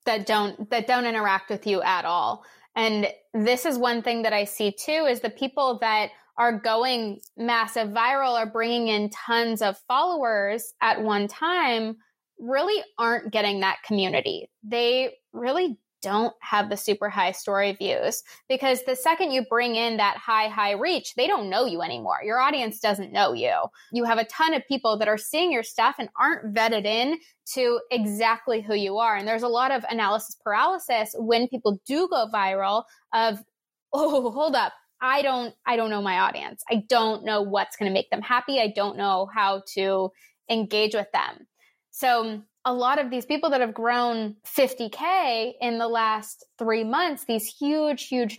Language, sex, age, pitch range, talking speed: English, female, 20-39, 215-260 Hz, 185 wpm